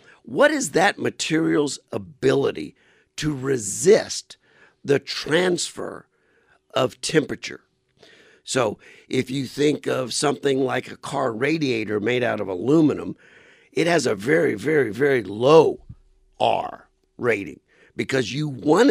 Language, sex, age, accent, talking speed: English, male, 60-79, American, 115 wpm